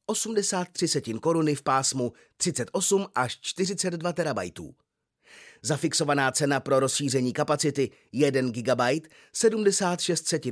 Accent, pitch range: native, 135-175 Hz